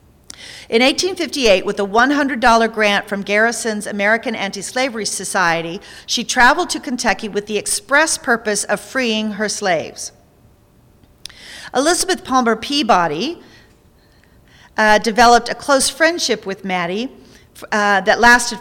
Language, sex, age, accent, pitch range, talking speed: English, female, 40-59, American, 200-255 Hz, 115 wpm